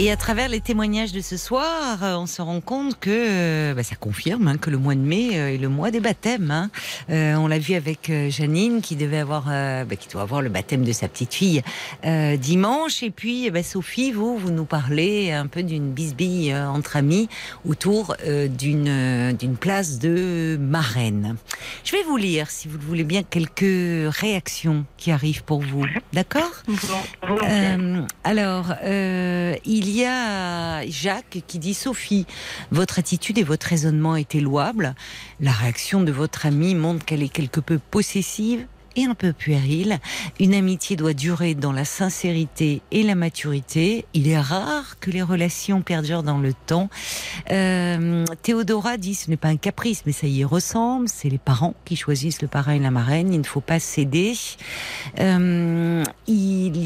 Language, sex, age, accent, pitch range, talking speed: French, female, 50-69, French, 150-195 Hz, 185 wpm